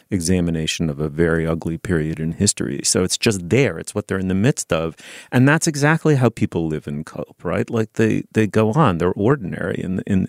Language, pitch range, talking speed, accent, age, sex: English, 80-115 Hz, 215 wpm, American, 40-59, male